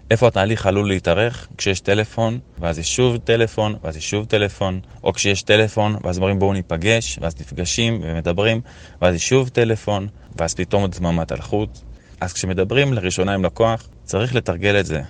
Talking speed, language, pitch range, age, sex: 165 wpm, Hebrew, 85-110 Hz, 20-39, male